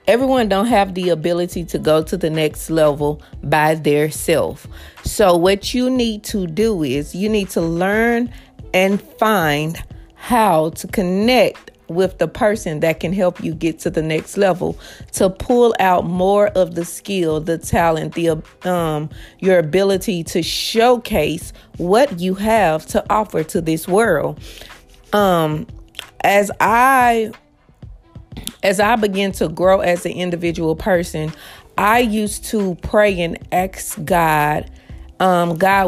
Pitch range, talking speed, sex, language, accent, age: 170-215 Hz, 145 wpm, female, English, American, 30-49